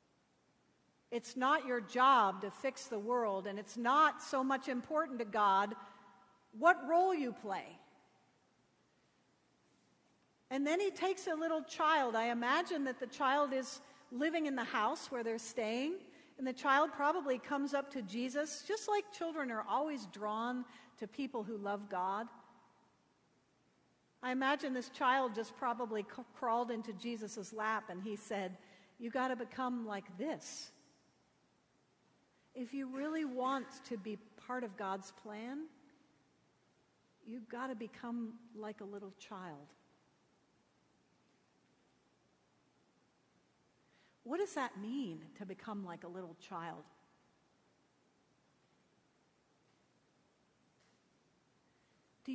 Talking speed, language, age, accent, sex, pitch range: 125 wpm, English, 50-69, American, female, 215-275 Hz